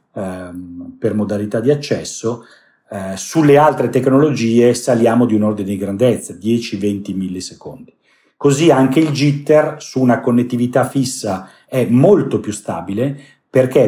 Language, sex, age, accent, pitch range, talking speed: Italian, male, 40-59, native, 110-140 Hz, 125 wpm